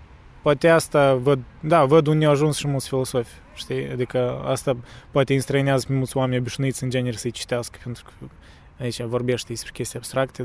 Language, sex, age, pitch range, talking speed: Romanian, male, 20-39, 120-135 Hz, 165 wpm